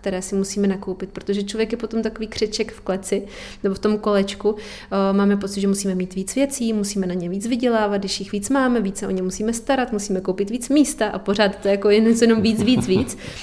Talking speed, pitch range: 225 wpm, 195-210 Hz